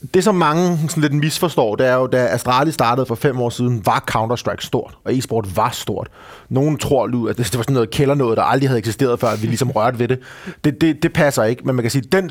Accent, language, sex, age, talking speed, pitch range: native, Danish, male, 30-49, 255 wpm, 115-145 Hz